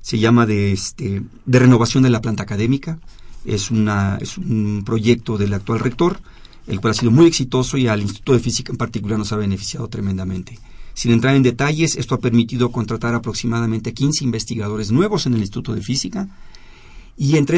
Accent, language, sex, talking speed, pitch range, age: Mexican, Spanish, male, 185 wpm, 110-140 Hz, 40-59